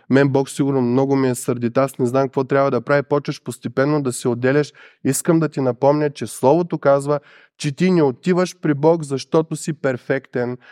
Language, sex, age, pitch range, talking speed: Bulgarian, male, 20-39, 135-165 Hz, 195 wpm